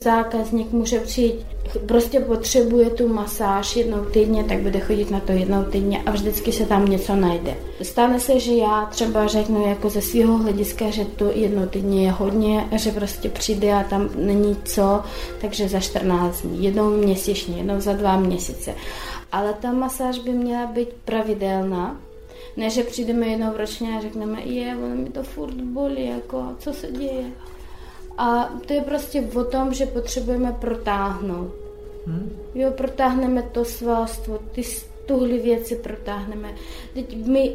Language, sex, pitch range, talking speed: Slovak, female, 205-245 Hz, 155 wpm